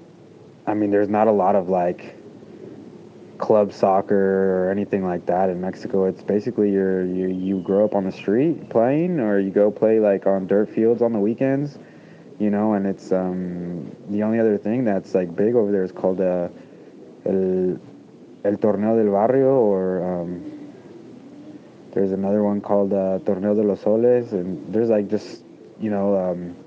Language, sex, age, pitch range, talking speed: English, male, 20-39, 95-105 Hz, 180 wpm